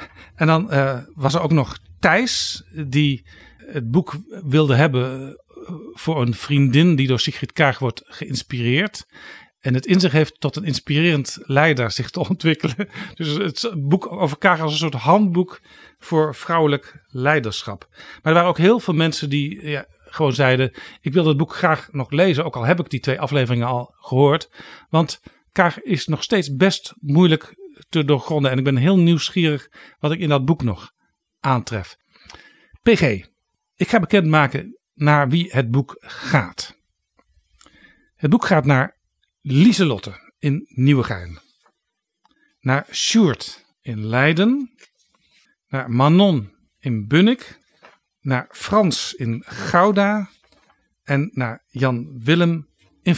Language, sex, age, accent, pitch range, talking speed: Dutch, male, 50-69, Dutch, 130-175 Hz, 140 wpm